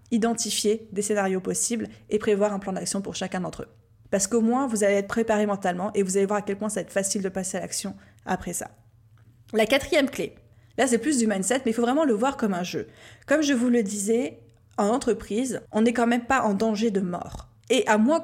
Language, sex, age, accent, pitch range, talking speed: French, female, 20-39, French, 200-240 Hz, 245 wpm